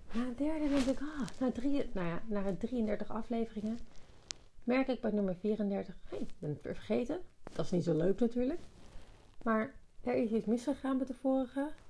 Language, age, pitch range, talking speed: Dutch, 40-59, 180-240 Hz, 170 wpm